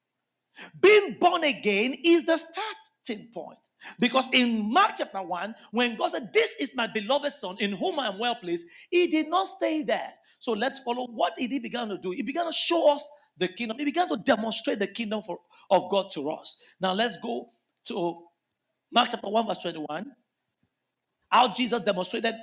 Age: 50-69